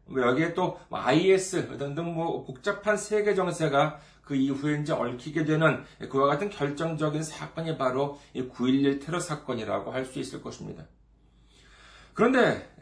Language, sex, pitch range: Korean, male, 130-185 Hz